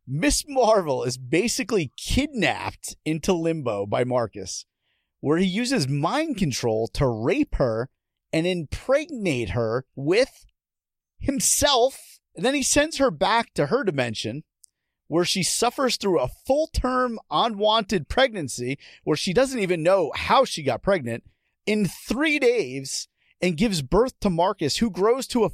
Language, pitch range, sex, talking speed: English, 135-225 Hz, male, 145 wpm